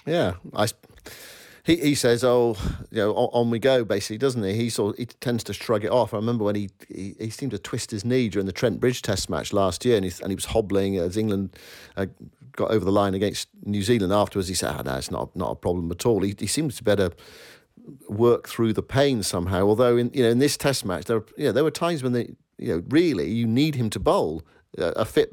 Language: English